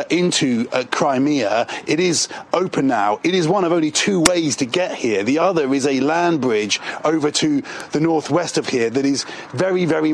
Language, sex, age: English, male, 40-59